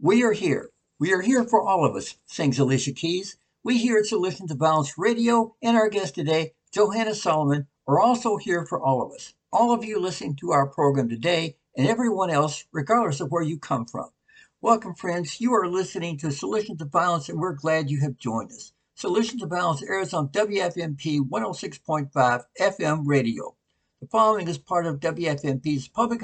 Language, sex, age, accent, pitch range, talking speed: English, male, 60-79, American, 145-205 Hz, 190 wpm